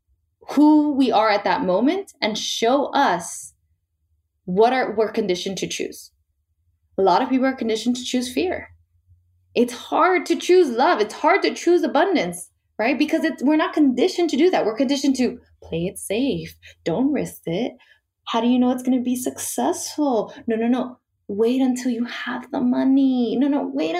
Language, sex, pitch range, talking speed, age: English, female, 195-285 Hz, 185 wpm, 20-39